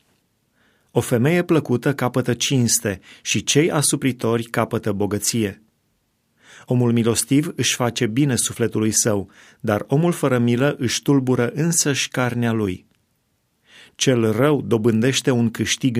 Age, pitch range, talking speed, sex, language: 30-49, 110-130 Hz, 115 wpm, male, Romanian